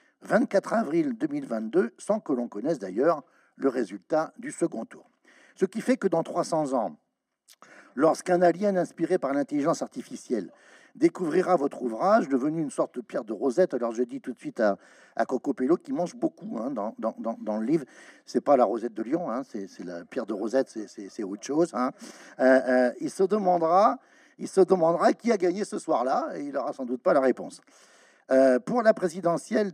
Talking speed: 200 wpm